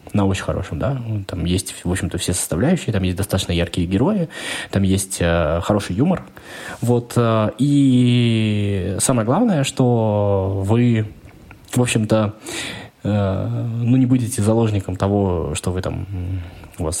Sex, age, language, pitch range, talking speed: male, 20-39, Russian, 90-110 Hz, 135 wpm